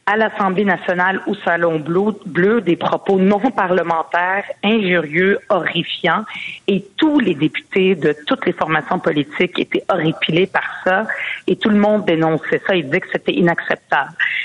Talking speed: 150 wpm